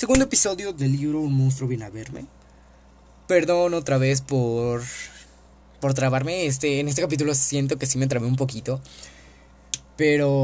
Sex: male